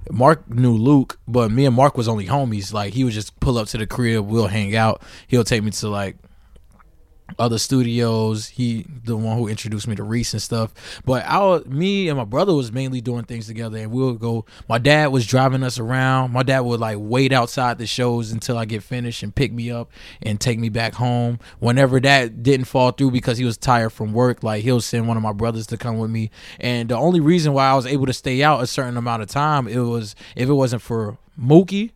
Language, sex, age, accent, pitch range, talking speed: English, male, 20-39, American, 110-130 Hz, 235 wpm